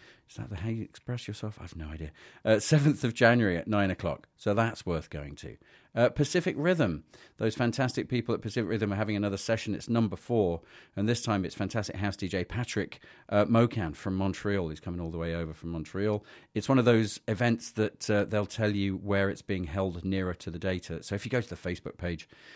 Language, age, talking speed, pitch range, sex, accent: English, 40-59, 225 wpm, 90-110 Hz, male, British